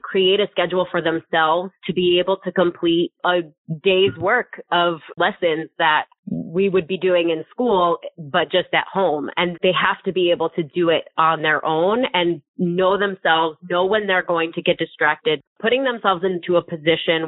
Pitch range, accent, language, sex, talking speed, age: 160-190 Hz, American, English, female, 185 wpm, 20-39